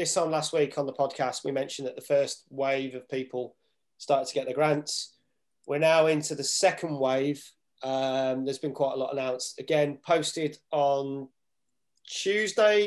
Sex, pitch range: male, 140-165 Hz